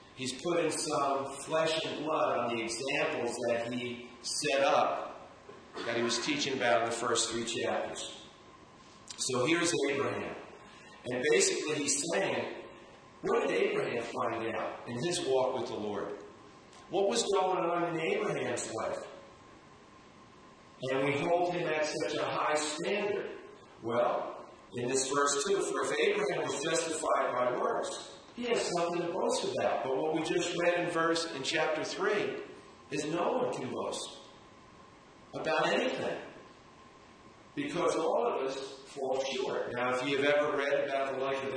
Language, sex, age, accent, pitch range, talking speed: English, male, 40-59, American, 130-175 Hz, 155 wpm